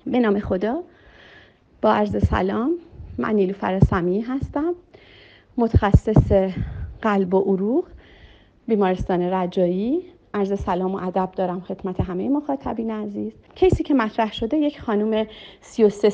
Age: 40-59